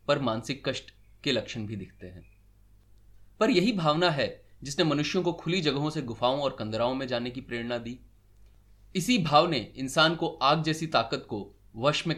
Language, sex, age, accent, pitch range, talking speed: Hindi, male, 30-49, native, 115-180 Hz, 180 wpm